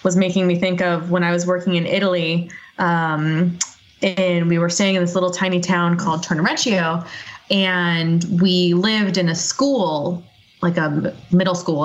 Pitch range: 170-195 Hz